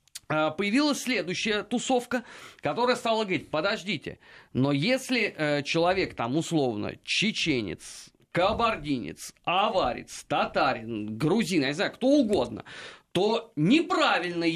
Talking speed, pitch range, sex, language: 100 wpm, 160-250 Hz, male, Russian